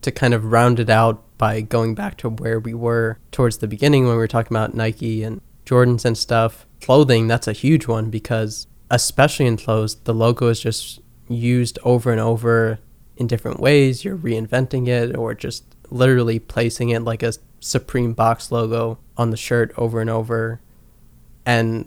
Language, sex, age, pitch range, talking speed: English, male, 20-39, 115-125 Hz, 180 wpm